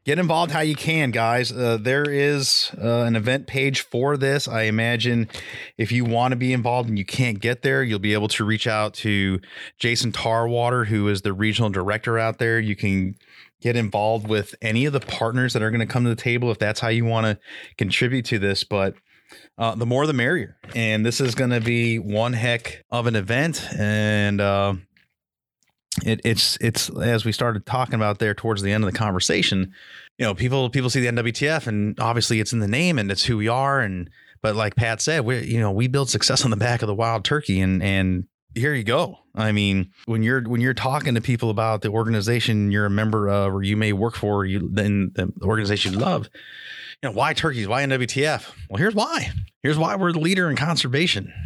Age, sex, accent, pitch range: 30-49, male, American, 105-125 Hz